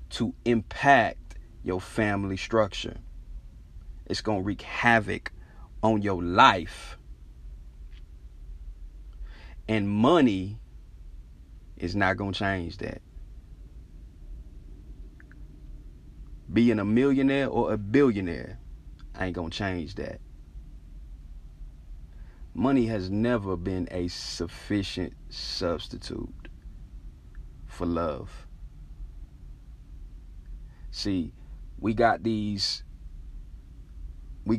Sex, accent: male, American